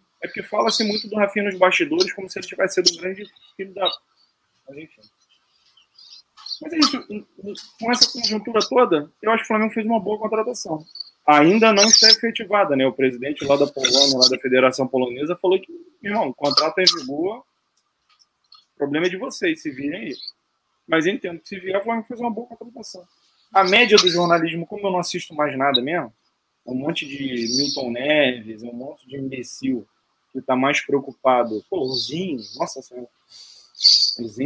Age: 20-39